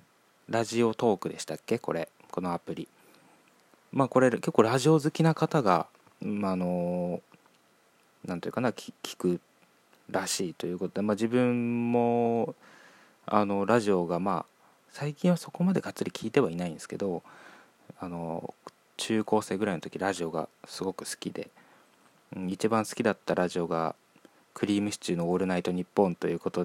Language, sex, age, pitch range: Japanese, male, 20-39, 90-120 Hz